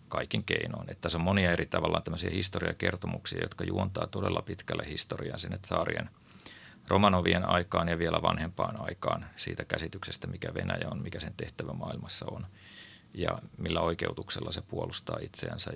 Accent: native